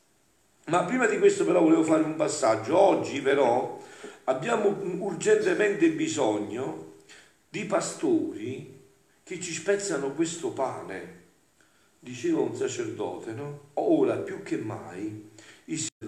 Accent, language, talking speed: native, Italian, 110 wpm